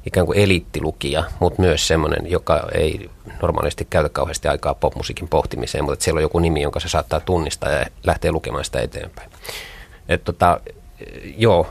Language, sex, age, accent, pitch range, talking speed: Finnish, male, 30-49, native, 80-95 Hz, 165 wpm